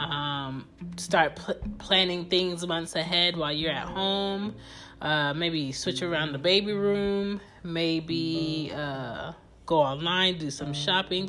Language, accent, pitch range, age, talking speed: English, American, 150-185 Hz, 30-49, 135 wpm